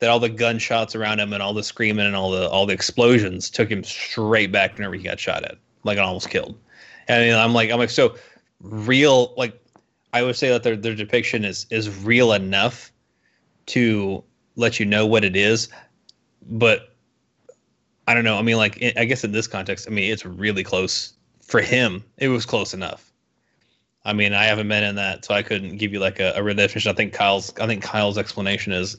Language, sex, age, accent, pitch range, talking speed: English, male, 20-39, American, 100-120 Hz, 210 wpm